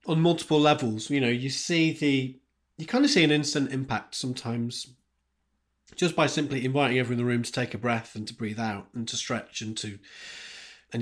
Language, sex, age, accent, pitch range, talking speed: English, male, 30-49, British, 115-145 Hz, 205 wpm